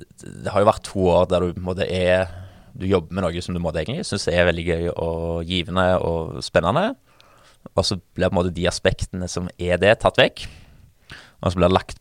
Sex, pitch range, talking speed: male, 90-145 Hz, 200 wpm